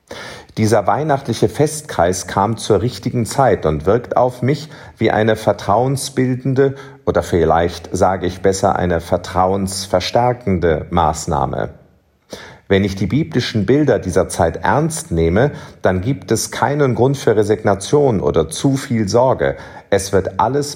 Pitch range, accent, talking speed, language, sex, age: 95-130 Hz, German, 130 wpm, German, male, 50-69